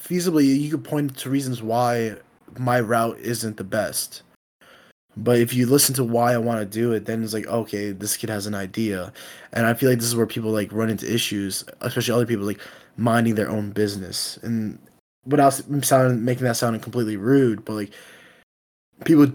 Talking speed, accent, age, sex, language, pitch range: 195 wpm, American, 20-39, male, English, 110-130 Hz